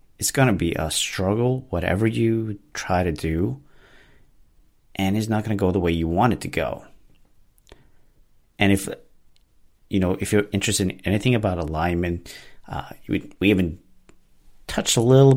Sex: male